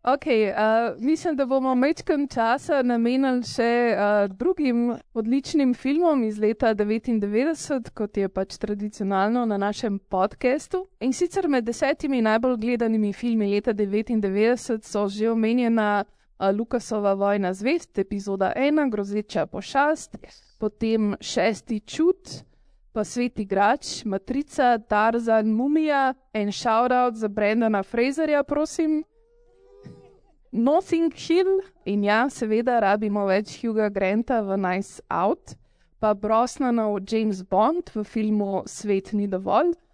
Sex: female